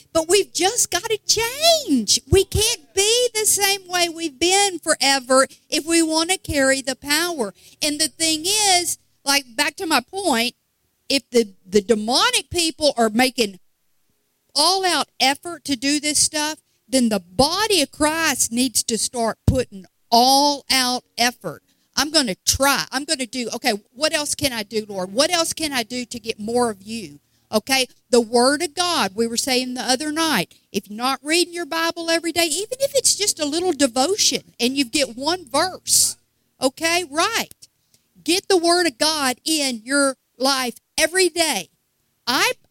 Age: 50-69